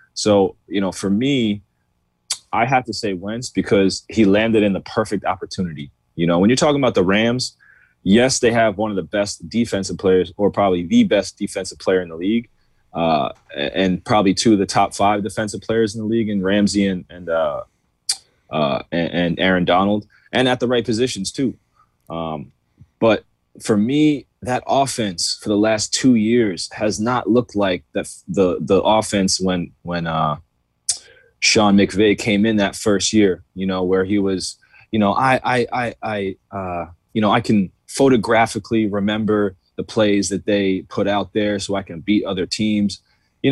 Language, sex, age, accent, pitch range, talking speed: English, male, 20-39, American, 95-110 Hz, 180 wpm